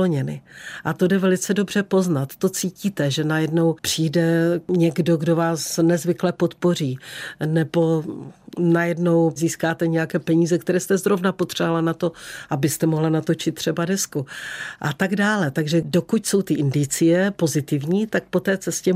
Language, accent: Czech, native